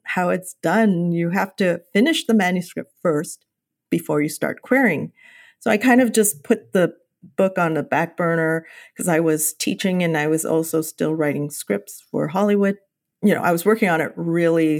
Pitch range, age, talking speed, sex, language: 170-225 Hz, 40-59, 190 wpm, female, English